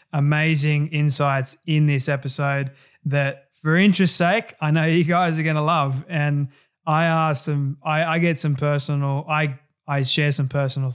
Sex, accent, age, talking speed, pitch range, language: male, Australian, 20-39, 170 wpm, 140-160 Hz, English